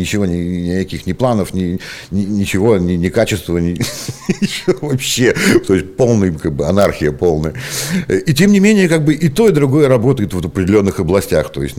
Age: 60-79